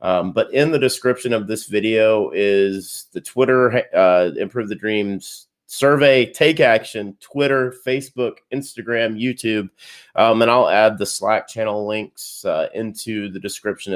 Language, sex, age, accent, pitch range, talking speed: English, male, 30-49, American, 100-125 Hz, 145 wpm